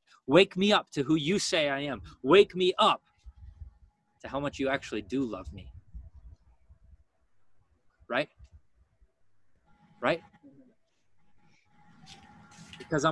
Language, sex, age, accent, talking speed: English, male, 20-39, American, 105 wpm